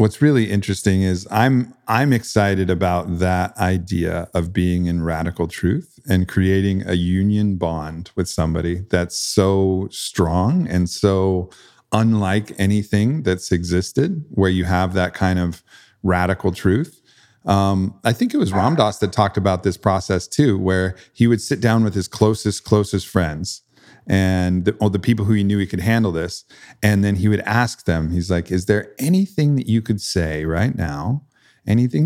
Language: English